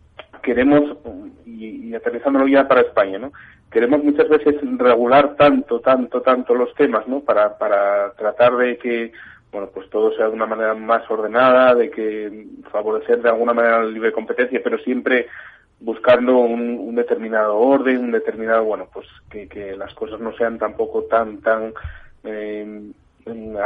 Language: Spanish